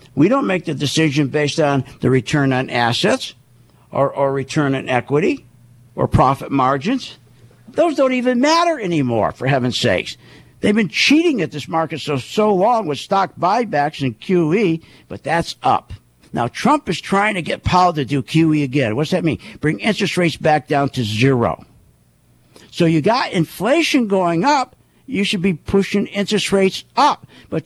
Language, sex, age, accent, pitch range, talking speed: English, male, 60-79, American, 135-225 Hz, 170 wpm